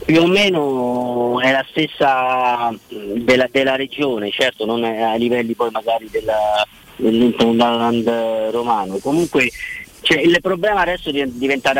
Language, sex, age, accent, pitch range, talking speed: Italian, male, 30-49, native, 110-150 Hz, 125 wpm